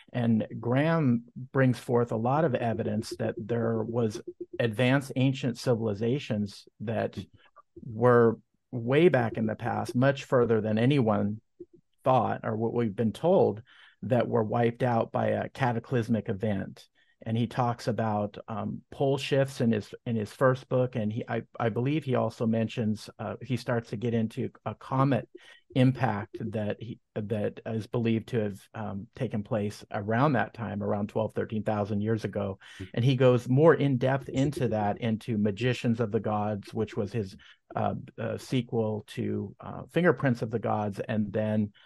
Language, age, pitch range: English, 50-69, 110-125 Hz